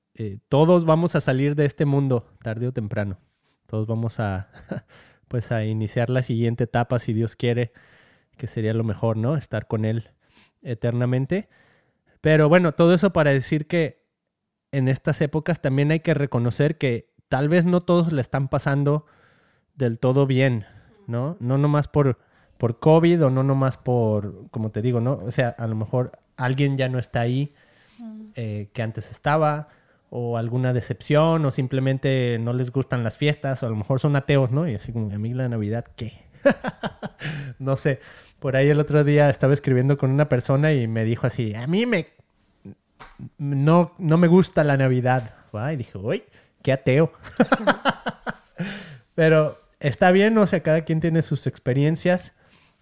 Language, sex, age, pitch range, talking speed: Spanish, male, 20-39, 120-150 Hz, 170 wpm